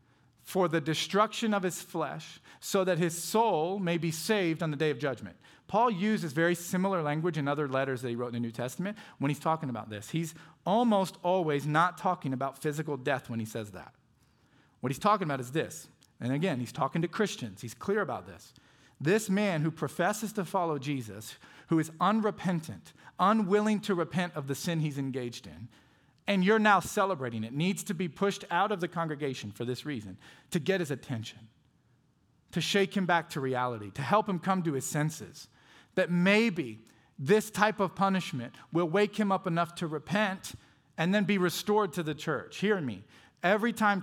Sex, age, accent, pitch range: male, 40-59, American, 140-195 Hz